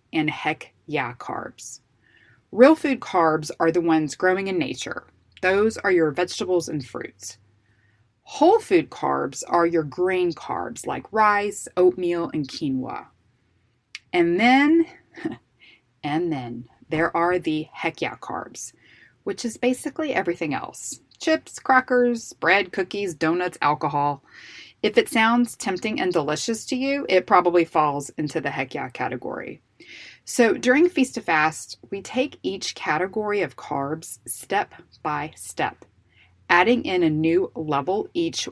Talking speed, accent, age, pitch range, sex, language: 135 wpm, American, 30-49, 155-245 Hz, female, English